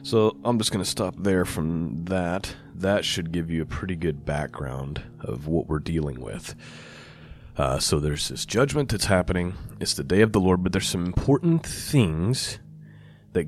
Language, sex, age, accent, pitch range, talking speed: English, male, 30-49, American, 85-120 Hz, 185 wpm